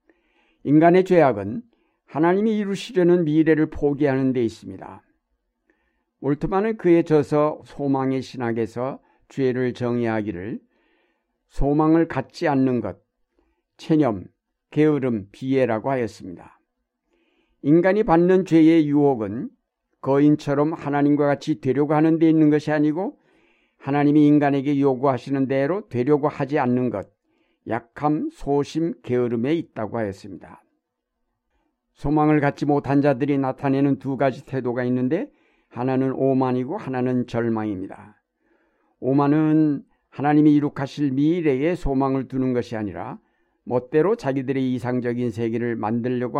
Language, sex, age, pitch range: Korean, male, 60-79, 125-150 Hz